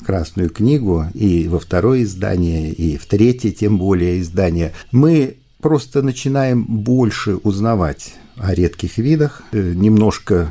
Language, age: Russian, 50-69